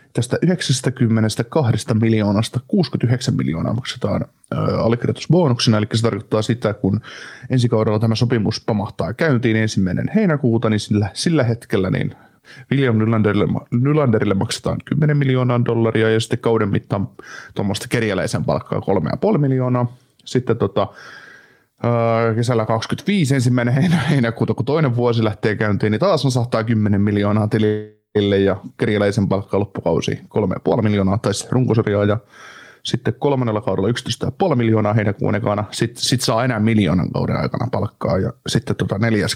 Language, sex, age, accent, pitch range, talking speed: Finnish, male, 30-49, native, 105-125 Hz, 135 wpm